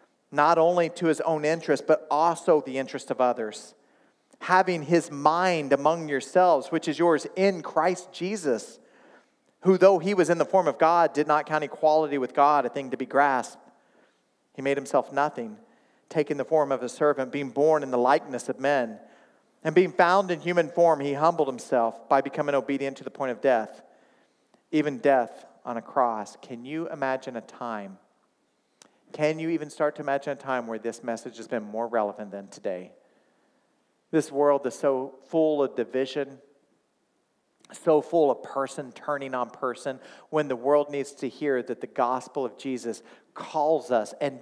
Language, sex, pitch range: English, male, 135-165 Hz